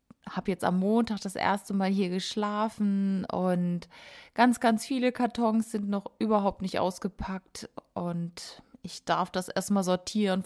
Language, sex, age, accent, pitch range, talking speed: German, female, 20-39, German, 185-230 Hz, 145 wpm